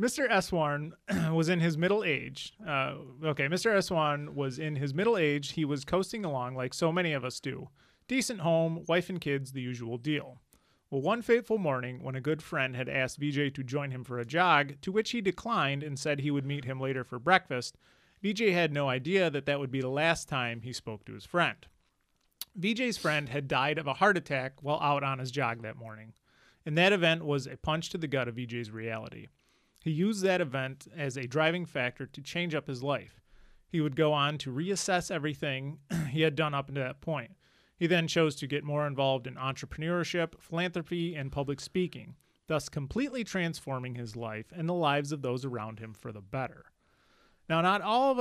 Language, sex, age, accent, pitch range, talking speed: English, male, 30-49, American, 135-175 Hz, 205 wpm